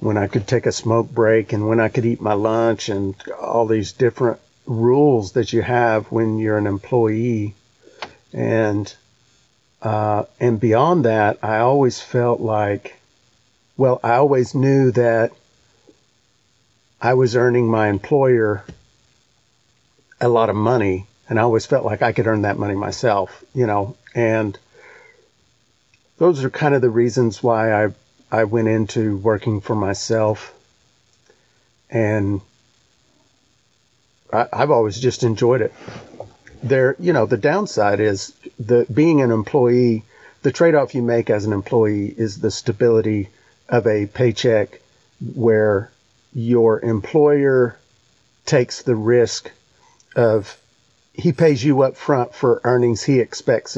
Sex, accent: male, American